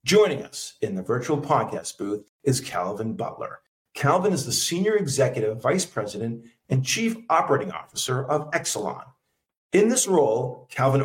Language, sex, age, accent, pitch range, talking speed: English, male, 50-69, American, 120-155 Hz, 145 wpm